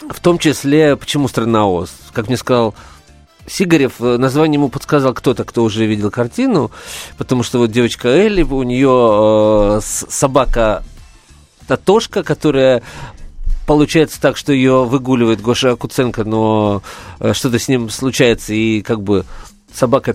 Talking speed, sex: 135 wpm, male